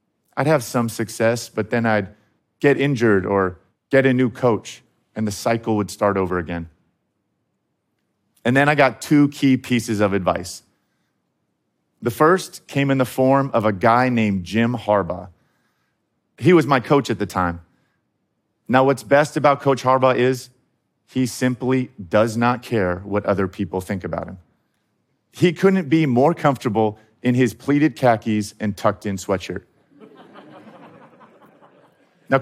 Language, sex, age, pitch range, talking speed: Arabic, male, 40-59, 105-140 Hz, 150 wpm